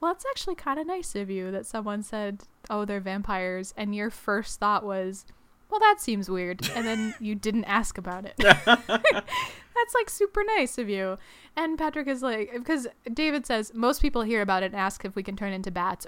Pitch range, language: 195-290 Hz, English